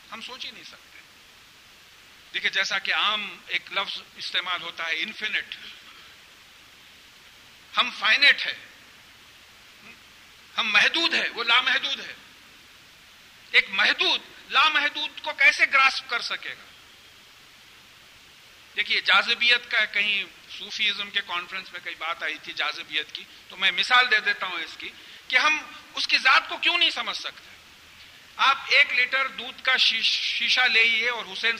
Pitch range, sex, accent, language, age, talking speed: 190-285 Hz, male, Indian, English, 50-69, 140 wpm